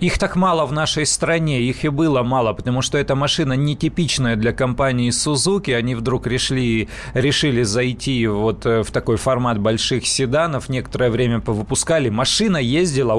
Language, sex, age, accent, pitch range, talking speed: Russian, male, 30-49, native, 115-140 Hz, 155 wpm